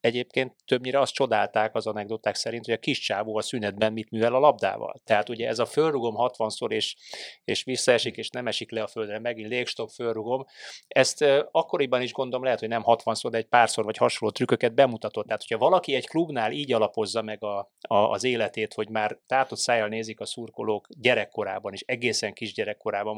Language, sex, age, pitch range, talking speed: Hungarian, male, 30-49, 105-130 Hz, 190 wpm